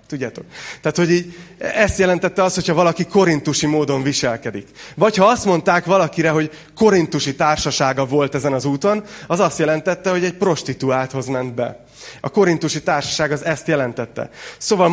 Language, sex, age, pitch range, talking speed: Hungarian, male, 30-49, 130-165 Hz, 155 wpm